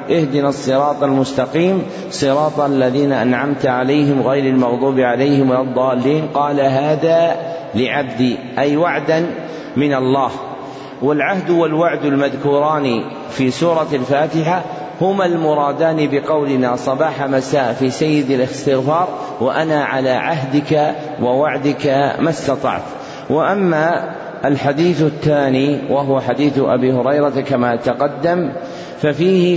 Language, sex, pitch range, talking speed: Arabic, male, 135-160 Hz, 100 wpm